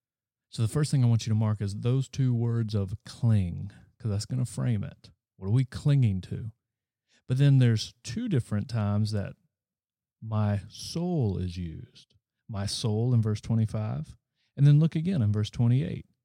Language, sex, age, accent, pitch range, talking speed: English, male, 40-59, American, 105-130 Hz, 180 wpm